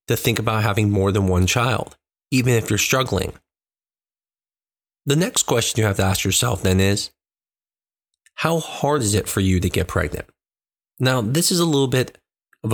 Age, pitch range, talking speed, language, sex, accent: 20-39, 100-135 Hz, 180 wpm, English, male, American